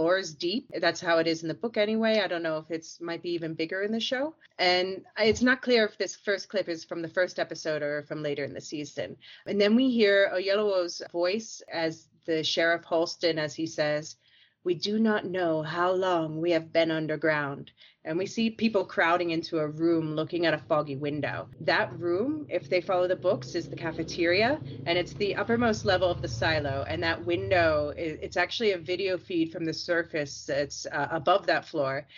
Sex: female